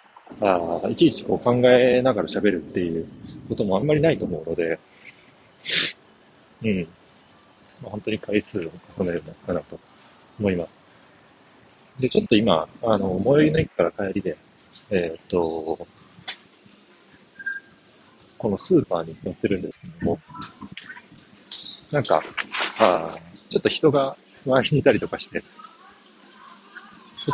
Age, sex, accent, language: 40-59, male, native, Japanese